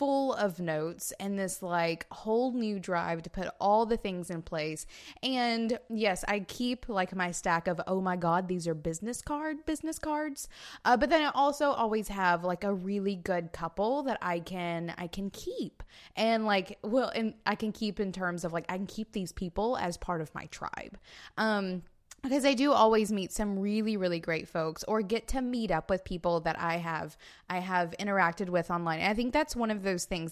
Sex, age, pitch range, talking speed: female, 20-39, 180-240 Hz, 210 wpm